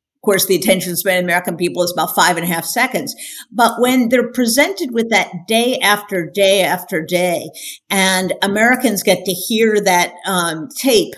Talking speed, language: 190 wpm, English